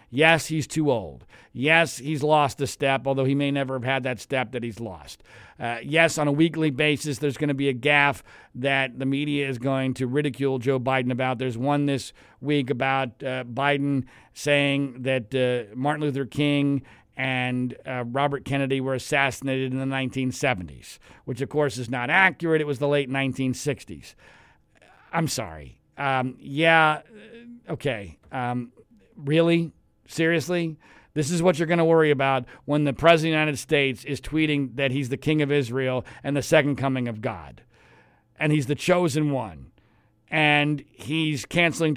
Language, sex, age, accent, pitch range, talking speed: English, male, 50-69, American, 130-155 Hz, 170 wpm